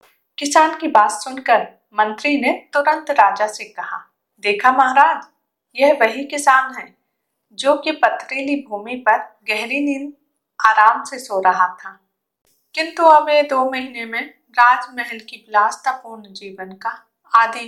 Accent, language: native, Hindi